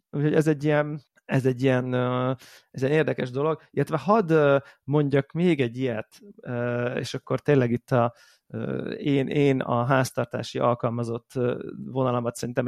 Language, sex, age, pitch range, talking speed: Hungarian, male, 30-49, 125-150 Hz, 135 wpm